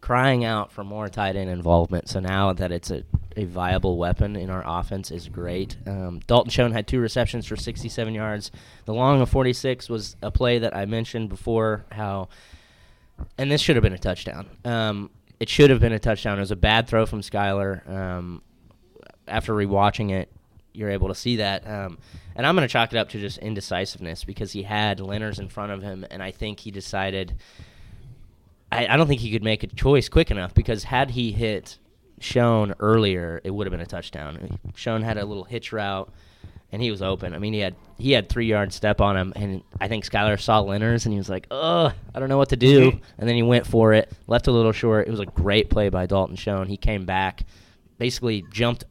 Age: 20-39